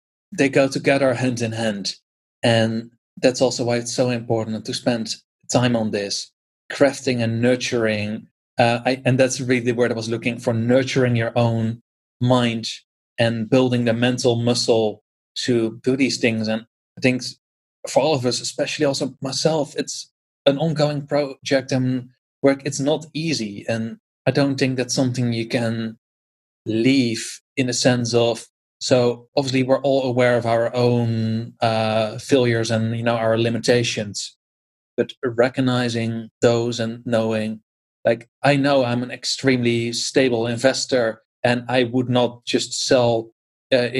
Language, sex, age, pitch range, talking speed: English, male, 30-49, 115-130 Hz, 150 wpm